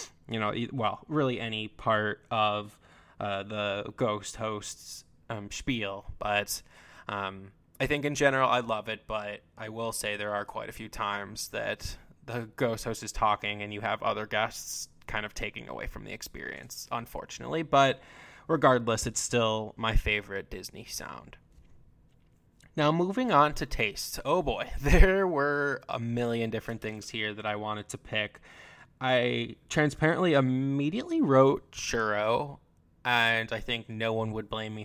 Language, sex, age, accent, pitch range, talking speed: English, male, 10-29, American, 105-130 Hz, 155 wpm